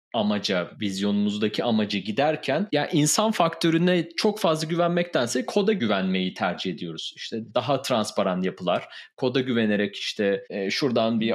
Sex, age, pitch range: male, 30-49, 110-165 Hz